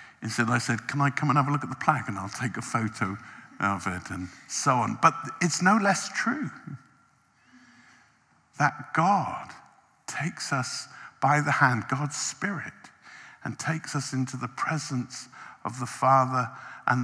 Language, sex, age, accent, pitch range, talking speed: English, male, 50-69, British, 120-155 Hz, 165 wpm